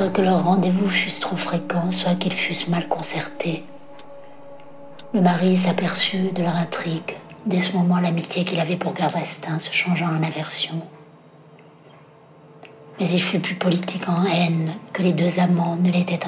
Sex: female